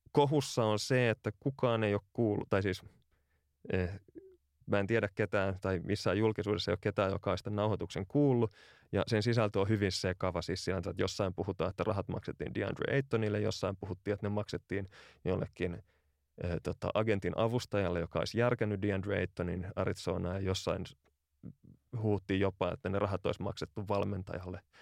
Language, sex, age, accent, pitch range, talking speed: Finnish, male, 30-49, native, 85-105 Hz, 160 wpm